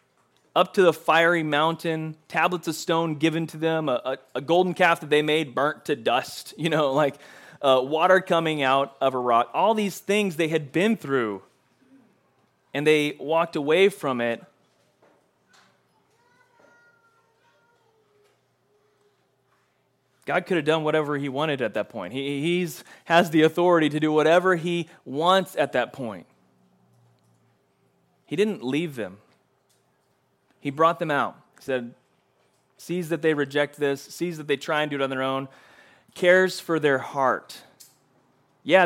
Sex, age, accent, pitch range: male, 30-49, American, 140-180 Hz